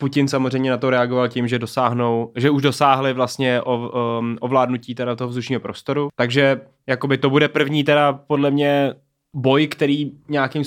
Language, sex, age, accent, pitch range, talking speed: Czech, male, 20-39, native, 130-145 Hz, 160 wpm